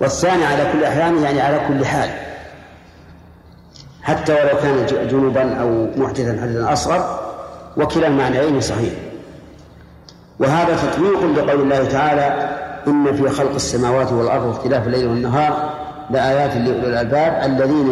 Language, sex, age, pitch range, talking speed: Arabic, male, 50-69, 130-155 Hz, 125 wpm